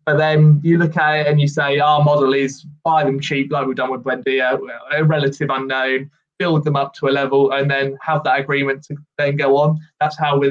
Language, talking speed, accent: English, 230 wpm, British